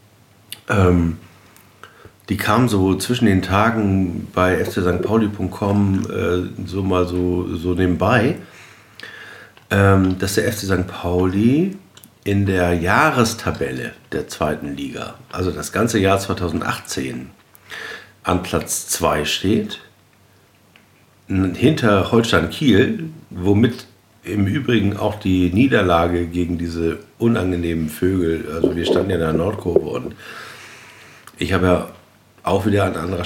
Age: 50-69